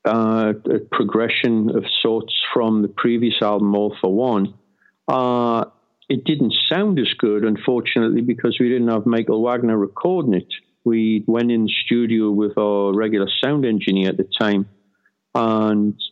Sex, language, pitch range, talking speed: male, English, 100-115 Hz, 155 wpm